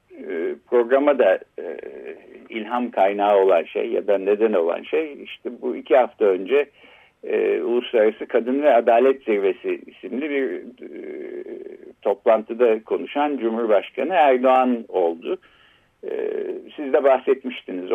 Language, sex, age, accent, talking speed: Turkish, male, 60-79, native, 105 wpm